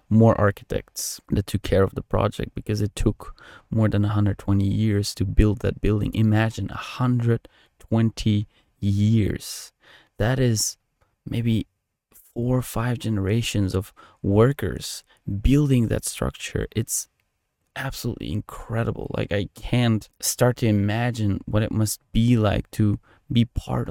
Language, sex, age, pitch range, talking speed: English, male, 20-39, 100-115 Hz, 130 wpm